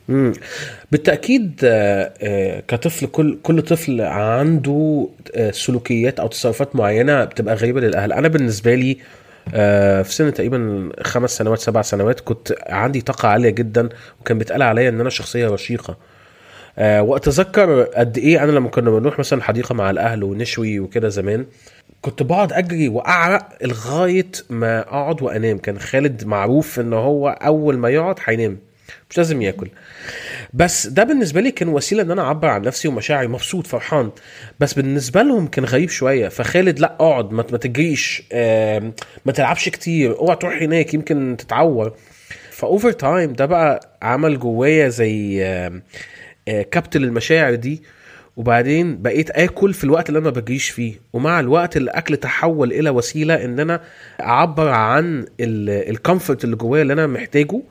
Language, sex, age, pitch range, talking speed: Arabic, male, 30-49, 115-155 Hz, 145 wpm